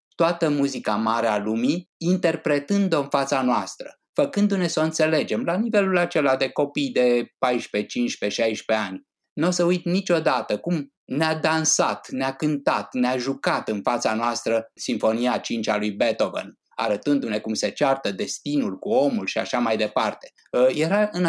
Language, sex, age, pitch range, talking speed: Romanian, male, 20-39, 110-165 Hz, 155 wpm